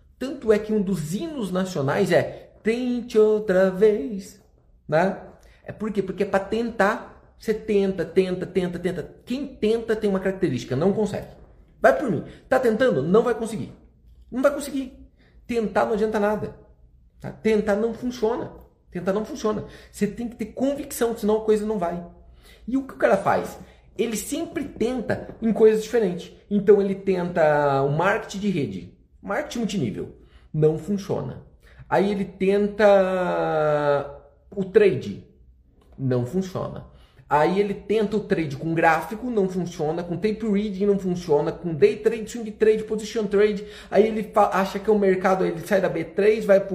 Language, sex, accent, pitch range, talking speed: Portuguese, male, Brazilian, 175-220 Hz, 165 wpm